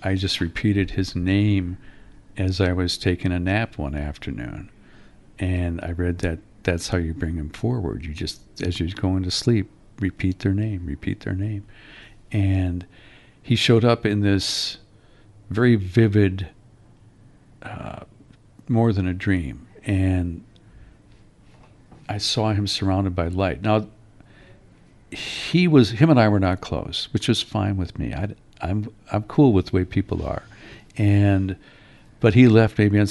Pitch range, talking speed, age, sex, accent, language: 95-110 Hz, 155 wpm, 50-69, male, American, English